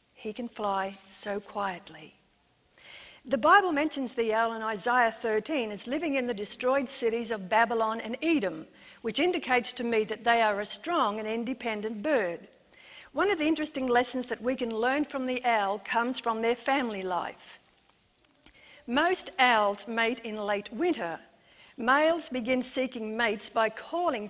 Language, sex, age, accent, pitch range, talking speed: English, female, 50-69, Australian, 215-260 Hz, 155 wpm